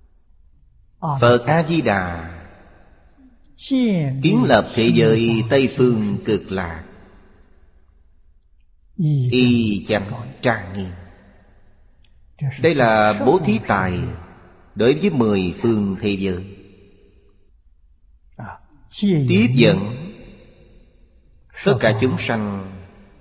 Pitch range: 80-120 Hz